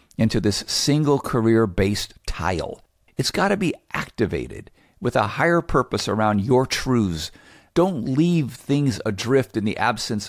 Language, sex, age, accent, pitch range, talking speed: English, male, 50-69, American, 95-125 Hz, 140 wpm